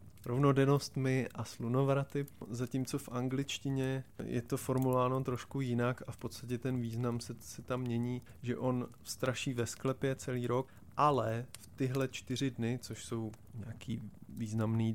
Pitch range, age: 115-130 Hz, 20-39